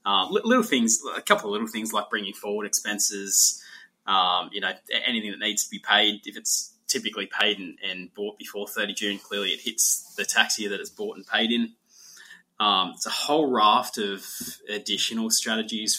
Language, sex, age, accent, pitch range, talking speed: English, male, 20-39, Australian, 105-165 Hz, 190 wpm